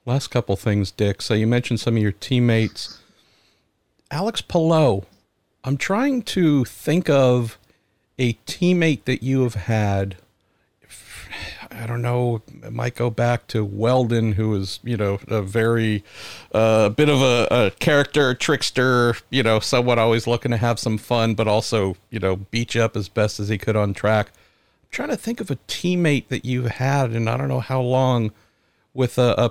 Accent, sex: American, male